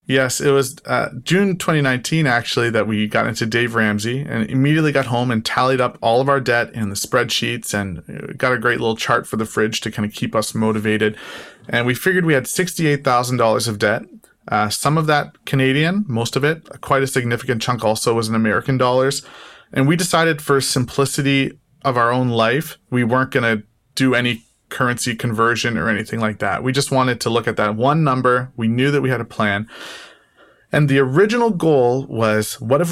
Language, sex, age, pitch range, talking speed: English, male, 30-49, 115-140 Hz, 200 wpm